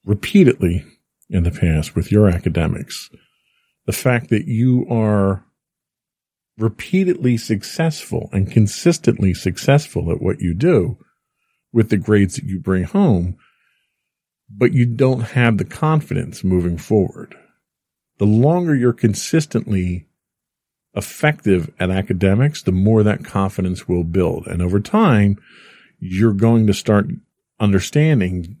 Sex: male